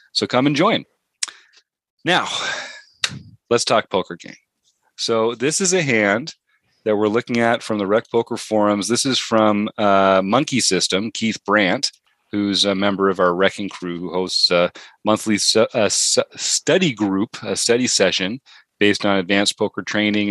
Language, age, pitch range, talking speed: English, 30-49, 95-115 Hz, 150 wpm